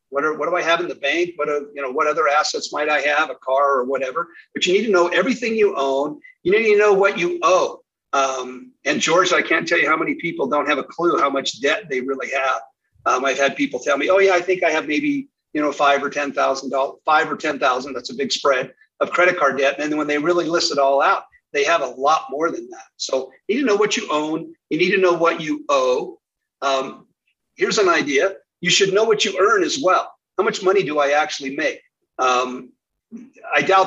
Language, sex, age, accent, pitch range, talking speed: English, male, 50-69, American, 140-220 Hz, 250 wpm